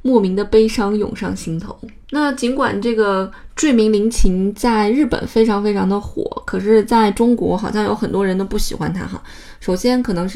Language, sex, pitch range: Chinese, female, 200-235 Hz